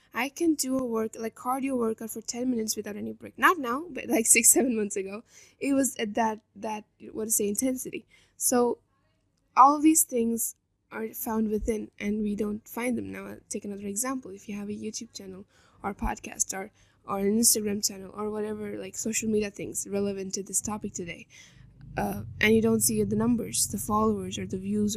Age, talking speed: 10-29, 200 wpm